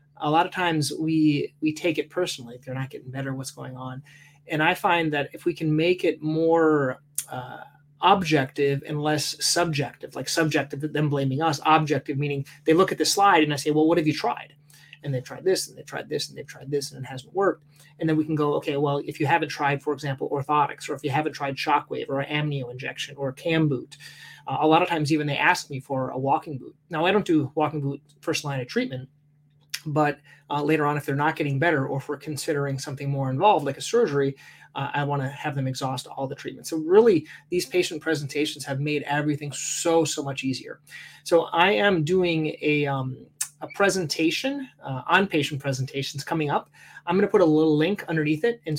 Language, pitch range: English, 140-160 Hz